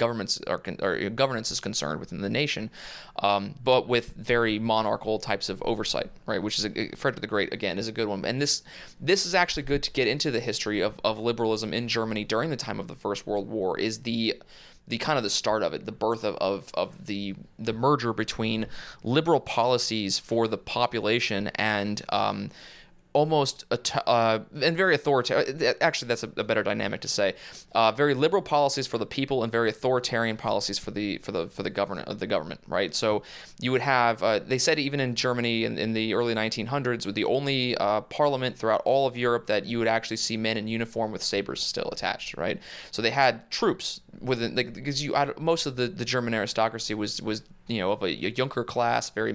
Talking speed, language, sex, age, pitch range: 215 wpm, English, male, 20-39, 105-130 Hz